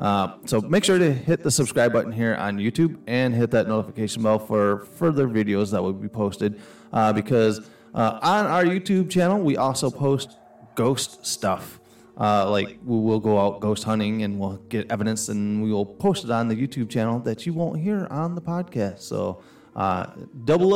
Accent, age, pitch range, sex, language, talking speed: American, 30-49, 105-165 Hz, male, English, 195 wpm